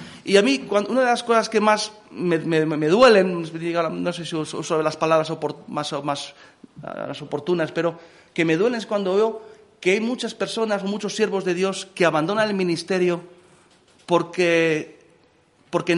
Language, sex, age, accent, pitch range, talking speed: Spanish, male, 40-59, Spanish, 160-205 Hz, 160 wpm